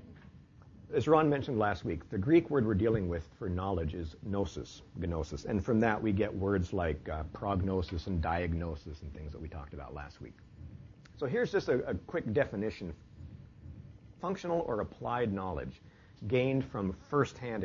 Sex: male